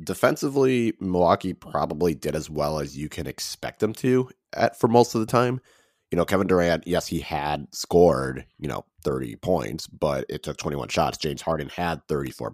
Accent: American